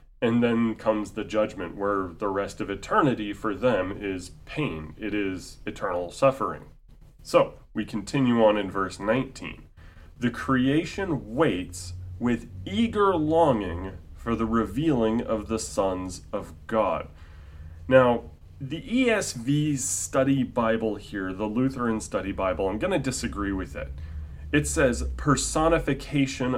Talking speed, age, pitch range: 130 wpm, 30-49, 90-135 Hz